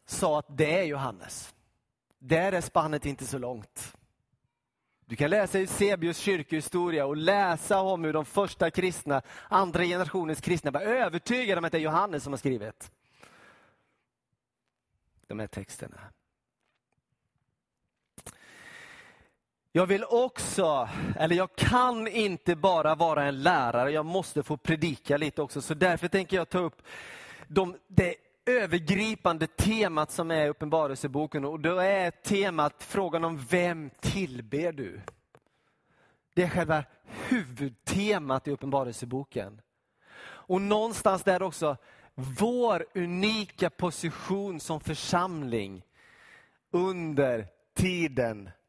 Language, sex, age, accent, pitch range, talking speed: Swedish, male, 30-49, native, 135-190 Hz, 120 wpm